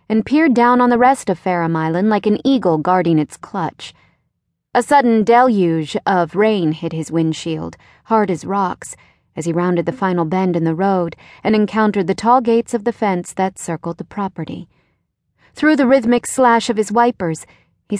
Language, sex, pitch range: English, female, 170-235 Hz